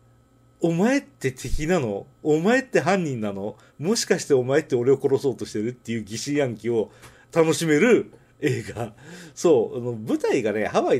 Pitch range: 120-190 Hz